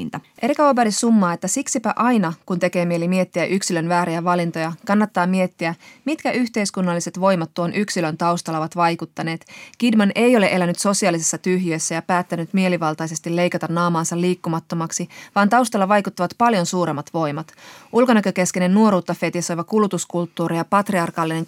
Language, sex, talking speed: Finnish, female, 130 wpm